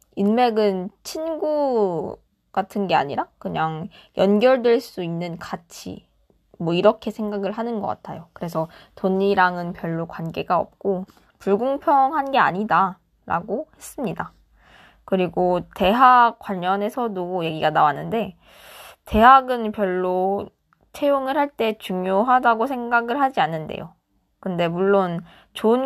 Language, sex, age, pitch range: Korean, female, 20-39, 185-245 Hz